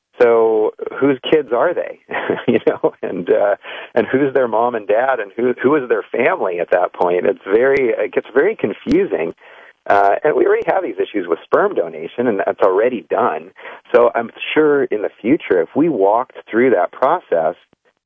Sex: male